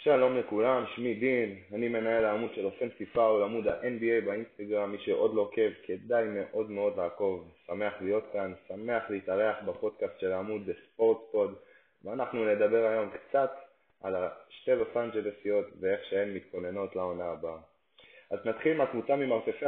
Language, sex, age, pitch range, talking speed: Hebrew, male, 20-39, 100-130 Hz, 150 wpm